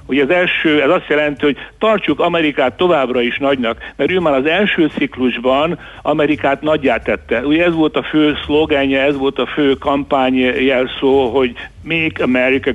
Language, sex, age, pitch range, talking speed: Hungarian, male, 60-79, 130-160 Hz, 170 wpm